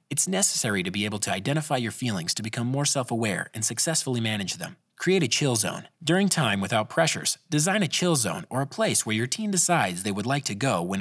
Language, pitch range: English, 110-160 Hz